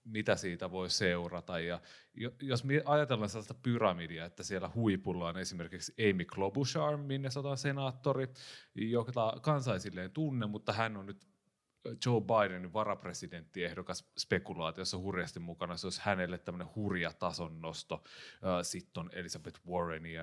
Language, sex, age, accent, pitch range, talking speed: Finnish, male, 30-49, native, 85-105 Hz, 125 wpm